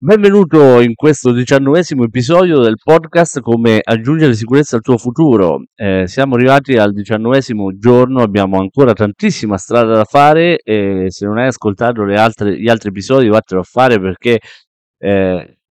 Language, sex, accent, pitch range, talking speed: Italian, male, native, 100-120 Hz, 150 wpm